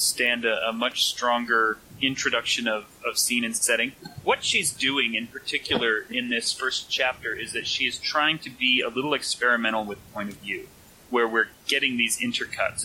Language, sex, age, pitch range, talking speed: English, male, 30-49, 115-160 Hz, 180 wpm